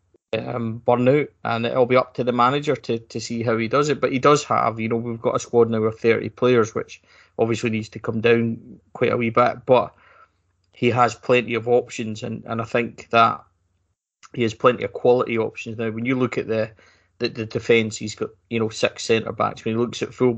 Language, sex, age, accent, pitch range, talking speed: English, male, 20-39, British, 110-125 Hz, 235 wpm